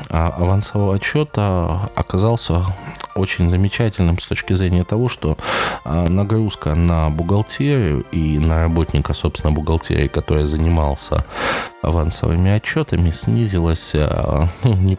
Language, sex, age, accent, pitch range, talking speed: Russian, male, 20-39, native, 80-100 Hz, 100 wpm